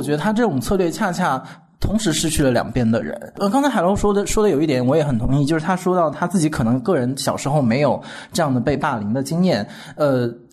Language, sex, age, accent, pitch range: Chinese, male, 20-39, native, 130-195 Hz